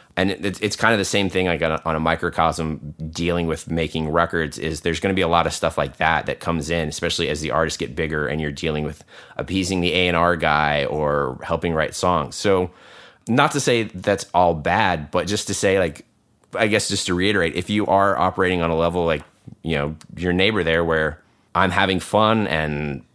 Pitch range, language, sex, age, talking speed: 80-95 Hz, English, male, 30-49, 220 wpm